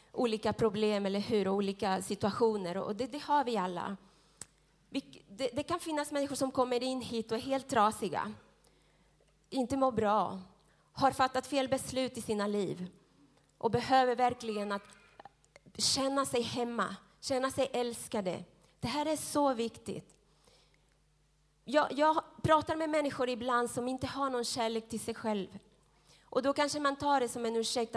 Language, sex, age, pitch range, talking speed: Swedish, female, 30-49, 215-275 Hz, 155 wpm